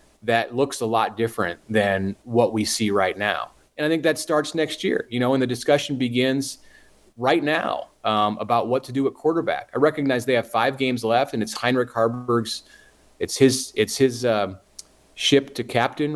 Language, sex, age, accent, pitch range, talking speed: English, male, 30-49, American, 105-130 Hz, 195 wpm